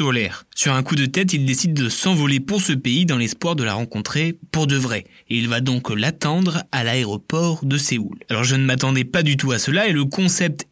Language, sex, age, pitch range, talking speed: French, male, 20-39, 130-170 Hz, 235 wpm